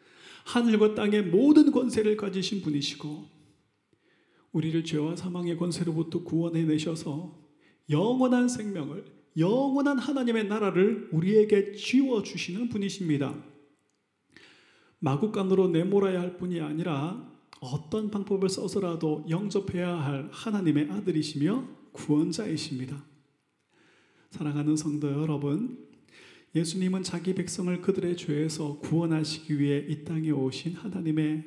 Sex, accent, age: male, native, 40-59